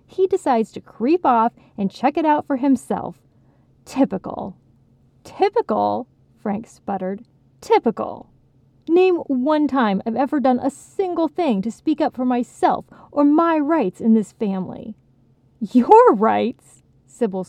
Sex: female